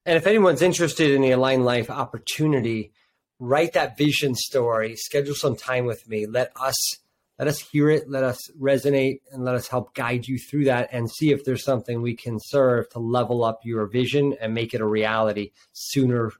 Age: 30-49